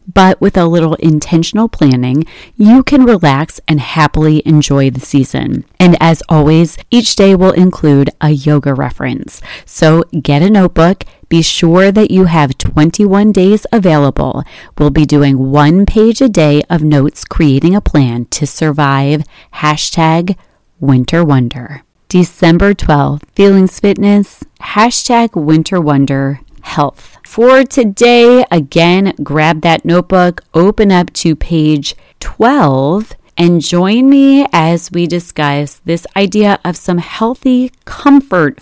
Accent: American